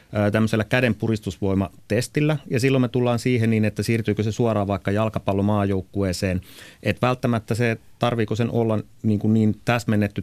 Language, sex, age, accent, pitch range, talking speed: Finnish, male, 30-49, native, 105-120 Hz, 145 wpm